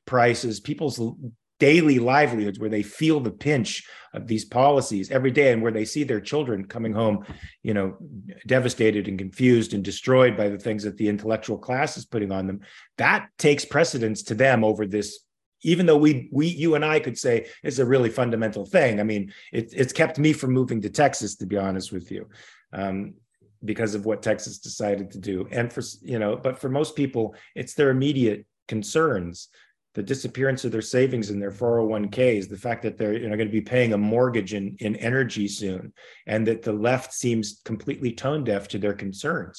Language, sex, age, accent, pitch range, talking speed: English, male, 40-59, American, 105-130 Hz, 200 wpm